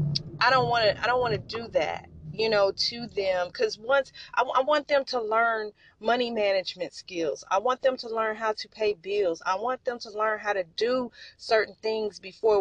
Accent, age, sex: American, 30-49, female